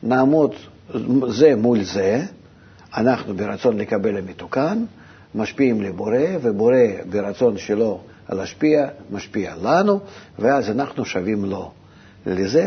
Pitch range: 105-155 Hz